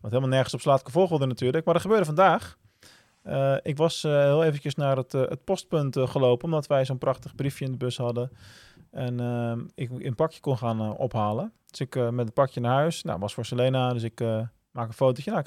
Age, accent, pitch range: 20-39, Dutch, 125-160 Hz